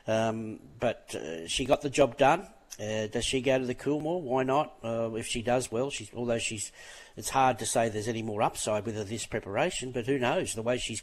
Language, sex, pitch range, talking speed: English, male, 110-135 Hz, 235 wpm